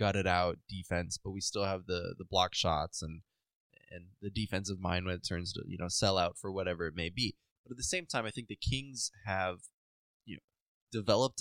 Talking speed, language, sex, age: 220 wpm, English, male, 20-39